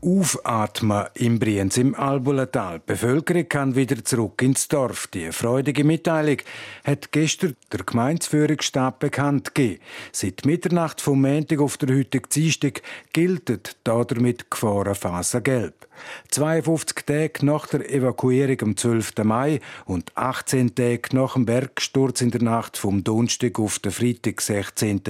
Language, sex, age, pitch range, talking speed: German, male, 50-69, 115-145 Hz, 135 wpm